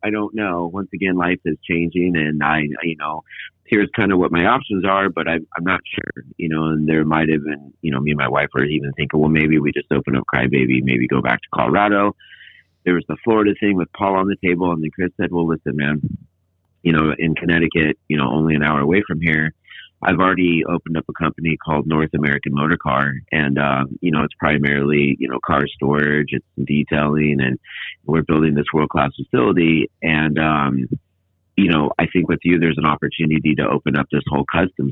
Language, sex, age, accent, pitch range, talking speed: English, male, 40-59, American, 75-90 Hz, 220 wpm